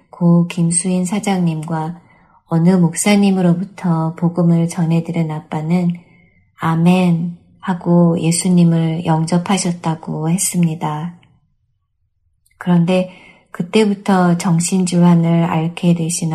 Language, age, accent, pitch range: Korean, 20-39, native, 160-185 Hz